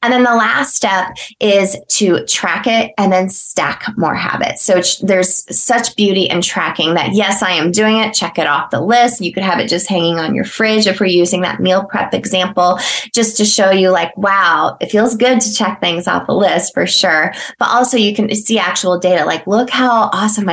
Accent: American